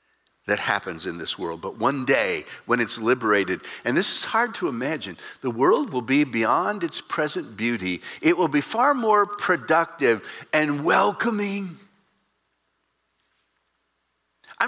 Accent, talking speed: American, 140 wpm